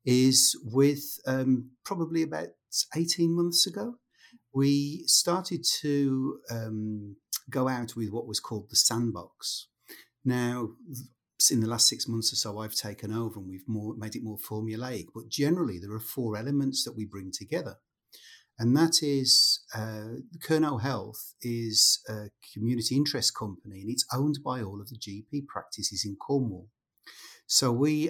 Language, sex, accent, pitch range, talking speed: English, male, British, 110-130 Hz, 150 wpm